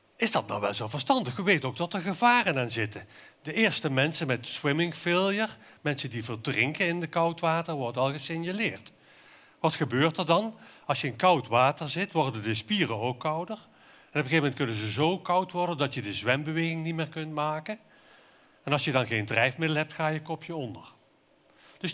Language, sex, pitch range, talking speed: Dutch, male, 130-175 Hz, 205 wpm